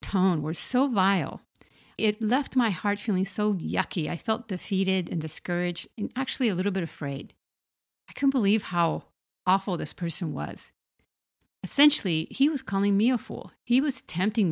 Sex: female